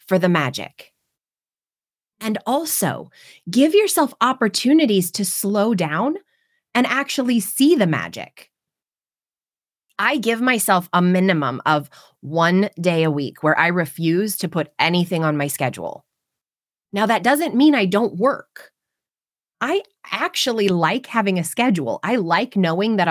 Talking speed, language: 135 wpm, English